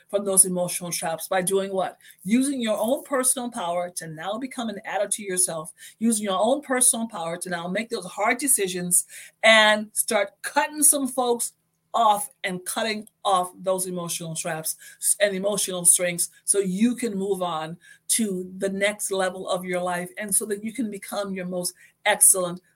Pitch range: 190-250 Hz